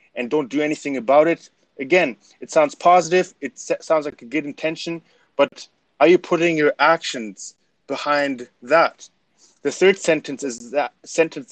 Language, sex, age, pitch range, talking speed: English, male, 20-39, 125-160 Hz, 155 wpm